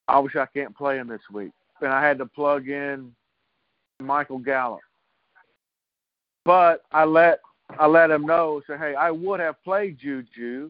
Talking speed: 175 wpm